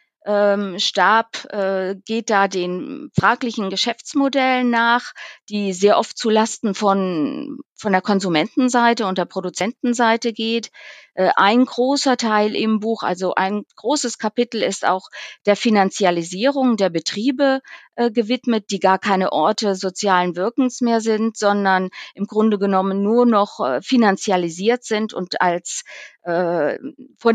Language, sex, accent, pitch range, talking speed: German, female, German, 185-230 Hz, 135 wpm